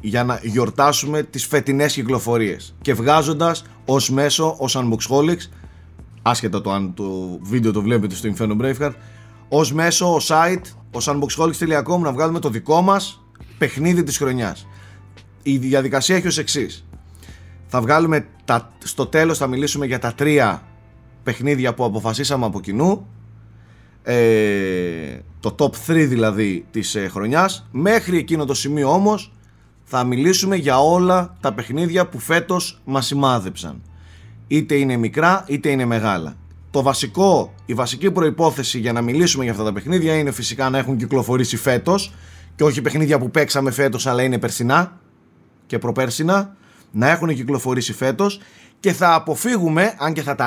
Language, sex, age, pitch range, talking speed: Greek, male, 30-49, 110-160 Hz, 145 wpm